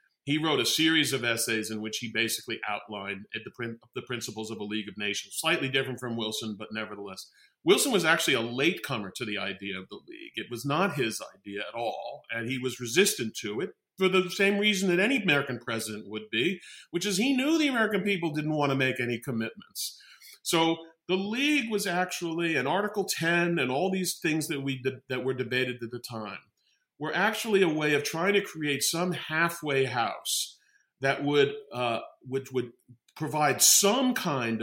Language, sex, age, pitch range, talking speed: English, male, 40-59, 115-160 Hz, 190 wpm